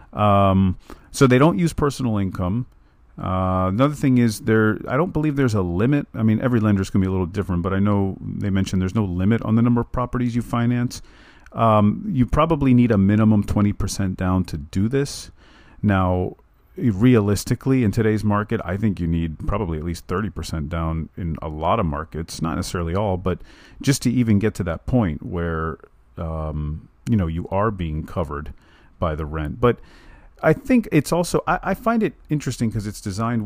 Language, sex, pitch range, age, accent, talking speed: English, male, 90-115 Hz, 40-59, American, 195 wpm